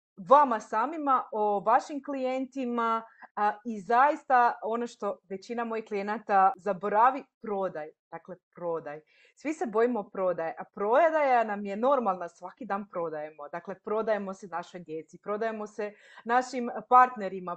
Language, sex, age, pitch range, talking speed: Croatian, female, 30-49, 190-250 Hz, 130 wpm